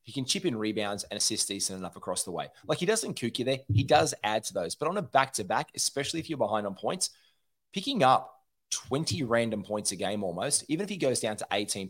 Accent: Australian